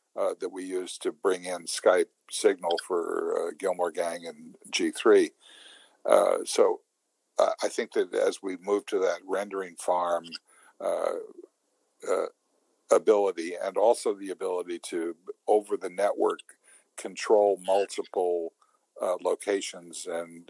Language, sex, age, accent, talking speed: English, male, 60-79, American, 130 wpm